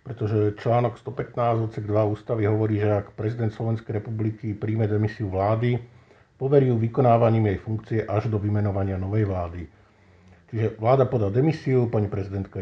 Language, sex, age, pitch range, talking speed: Slovak, male, 50-69, 100-120 Hz, 150 wpm